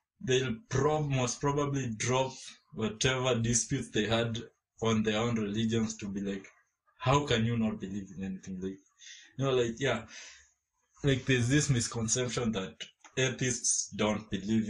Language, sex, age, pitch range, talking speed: English, male, 20-39, 105-130 Hz, 145 wpm